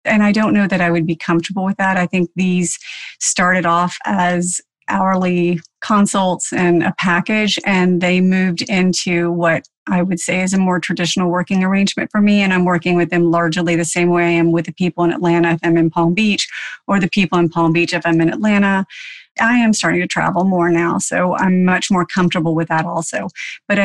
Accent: American